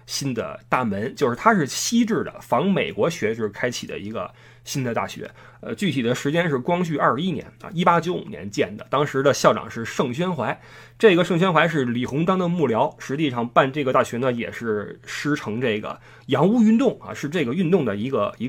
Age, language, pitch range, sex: 20-39, Chinese, 125-180 Hz, male